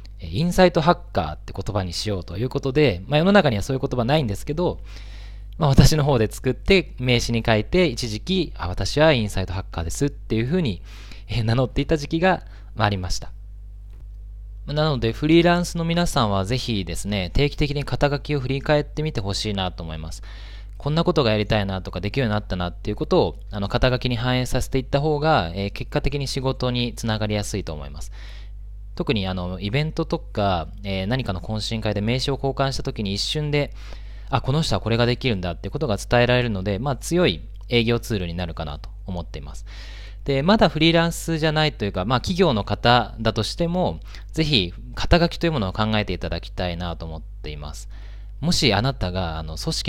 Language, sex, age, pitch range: Japanese, male, 20-39, 100-140 Hz